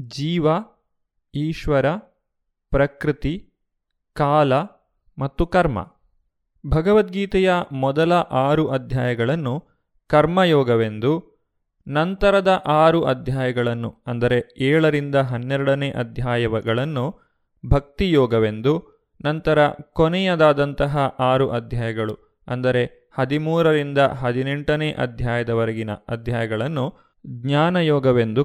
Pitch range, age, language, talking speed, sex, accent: 125-160 Hz, 30-49, Kannada, 60 wpm, male, native